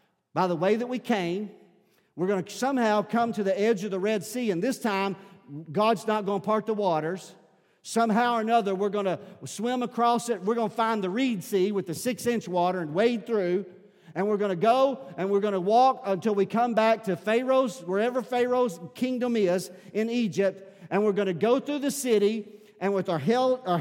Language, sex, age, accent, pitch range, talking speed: English, male, 50-69, American, 205-260 Hz, 210 wpm